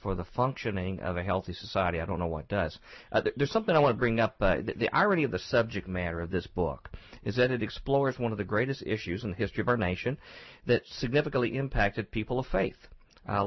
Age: 50-69